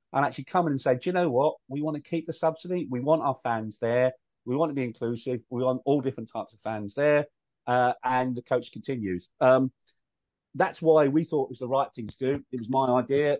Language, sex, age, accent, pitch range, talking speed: English, male, 40-59, British, 115-145 Hz, 245 wpm